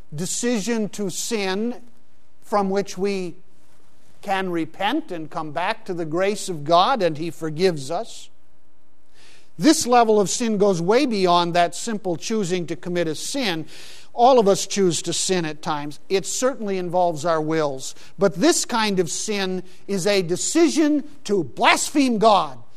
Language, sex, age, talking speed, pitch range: English, male, 50-69, 155 wpm, 165-220 Hz